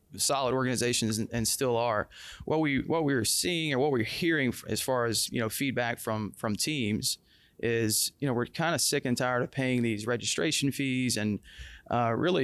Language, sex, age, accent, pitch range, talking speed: English, male, 30-49, American, 110-130 Hz, 195 wpm